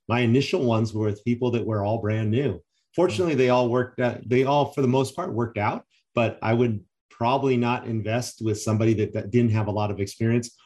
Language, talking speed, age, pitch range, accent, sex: English, 225 wpm, 30-49, 105-125 Hz, American, male